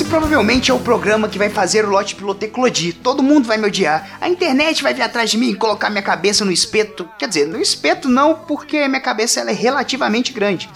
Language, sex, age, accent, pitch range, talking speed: Portuguese, male, 20-39, Brazilian, 200-260 Hz, 230 wpm